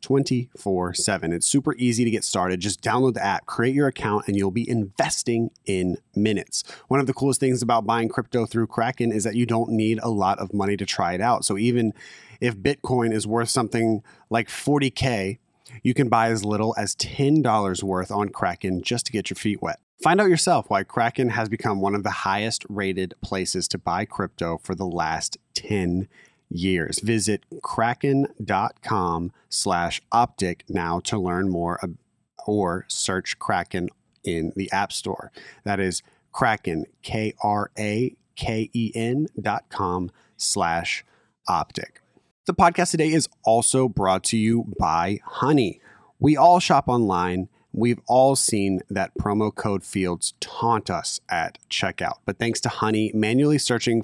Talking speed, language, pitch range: 160 wpm, English, 95-120 Hz